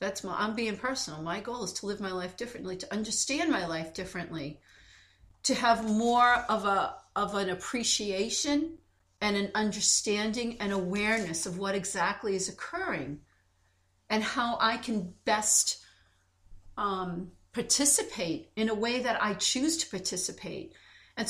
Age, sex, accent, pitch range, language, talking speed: 40-59, female, American, 185-240 Hz, English, 145 wpm